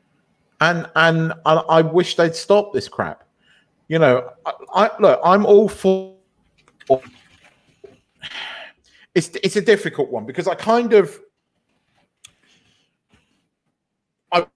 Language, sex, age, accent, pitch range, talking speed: English, male, 40-59, British, 130-185 Hz, 110 wpm